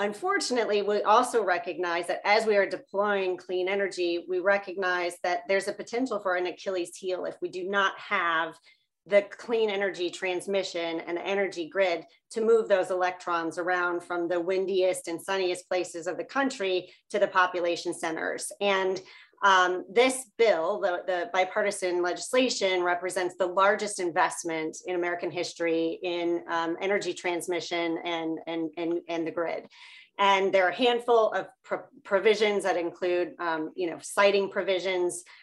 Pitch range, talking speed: 180-210 Hz, 155 wpm